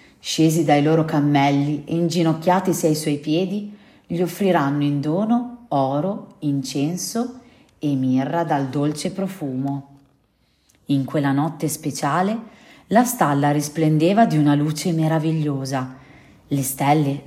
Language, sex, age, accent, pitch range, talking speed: Italian, female, 40-59, native, 145-170 Hz, 115 wpm